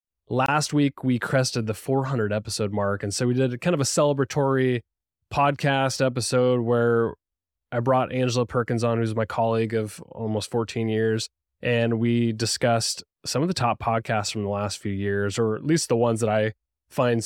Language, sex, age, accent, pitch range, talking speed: English, male, 20-39, American, 105-125 Hz, 175 wpm